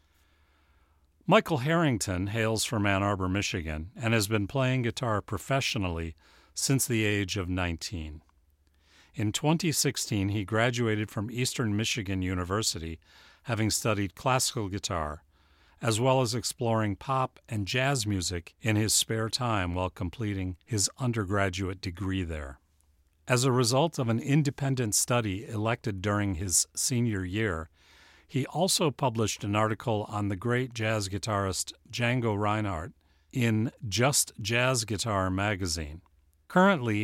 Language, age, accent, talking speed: English, 40-59, American, 125 wpm